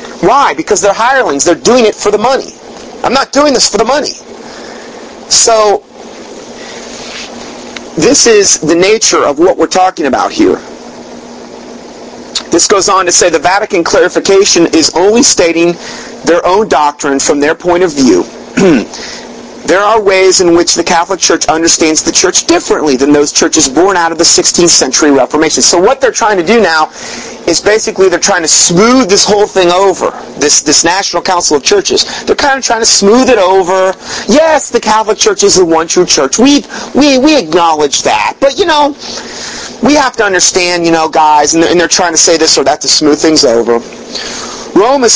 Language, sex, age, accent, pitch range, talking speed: English, male, 40-59, American, 165-250 Hz, 185 wpm